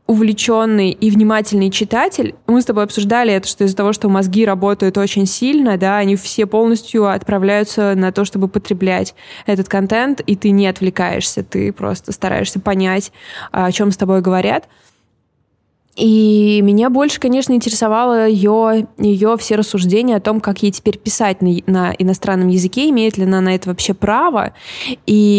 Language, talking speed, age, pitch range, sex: Russian, 160 wpm, 20-39, 190-220 Hz, female